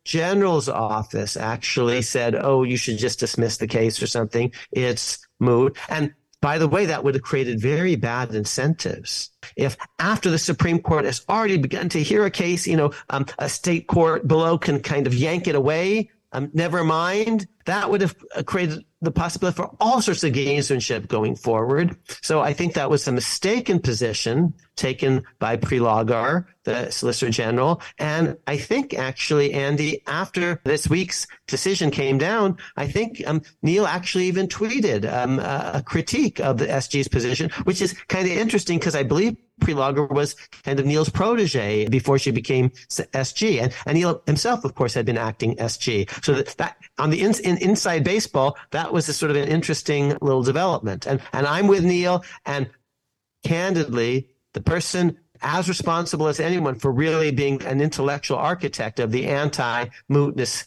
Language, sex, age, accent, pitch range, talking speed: English, male, 50-69, American, 130-175 Hz, 170 wpm